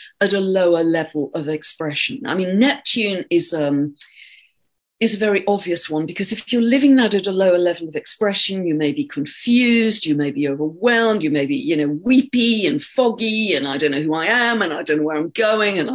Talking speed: 220 wpm